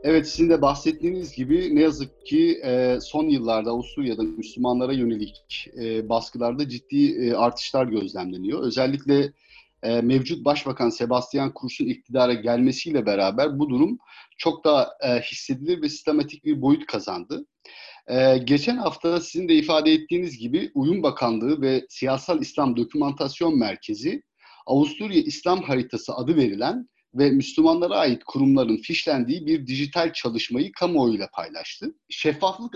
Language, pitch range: Turkish, 125-200 Hz